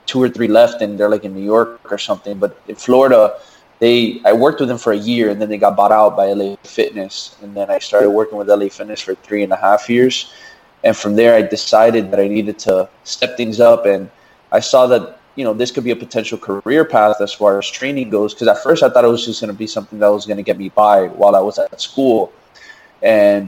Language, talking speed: English, 260 wpm